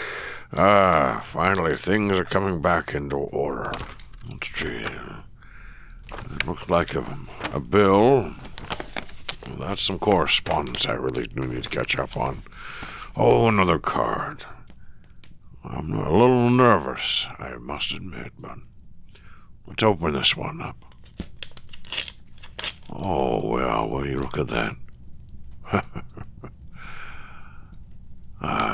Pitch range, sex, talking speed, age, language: 75-95 Hz, male, 110 wpm, 60-79, English